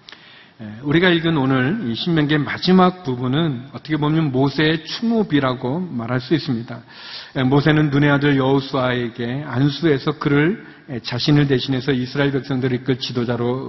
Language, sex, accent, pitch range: Korean, male, native, 130-170 Hz